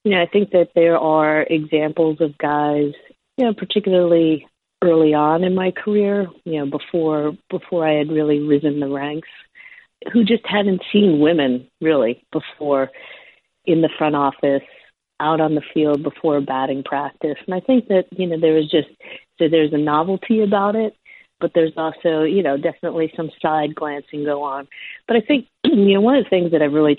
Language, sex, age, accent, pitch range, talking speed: English, female, 40-59, American, 150-180 Hz, 185 wpm